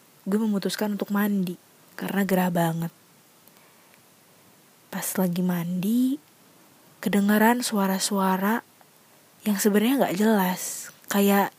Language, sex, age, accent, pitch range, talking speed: Indonesian, female, 20-39, native, 180-210 Hz, 90 wpm